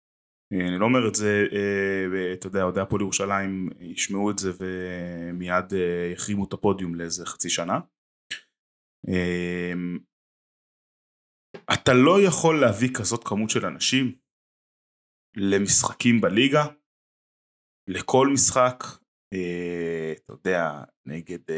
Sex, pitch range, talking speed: male, 90-125 Hz, 85 wpm